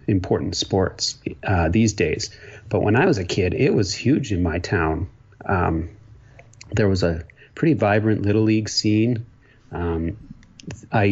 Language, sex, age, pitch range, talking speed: English, male, 30-49, 95-115 Hz, 150 wpm